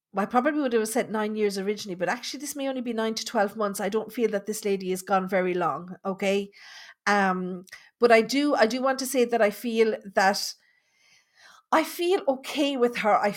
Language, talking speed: English, 215 wpm